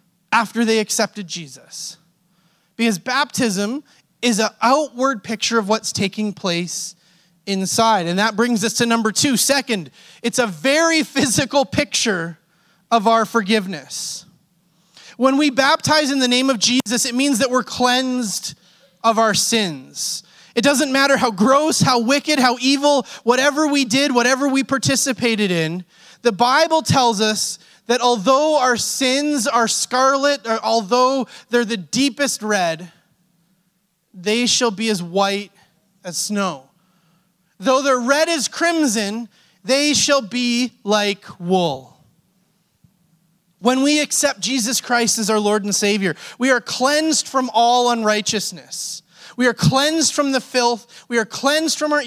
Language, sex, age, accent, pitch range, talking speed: English, male, 30-49, American, 185-265 Hz, 140 wpm